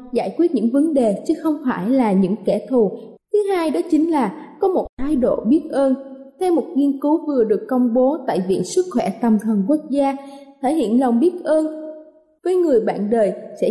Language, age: Vietnamese, 20-39